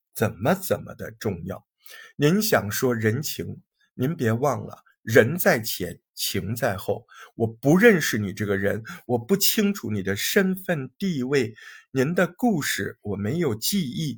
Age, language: 50-69, Chinese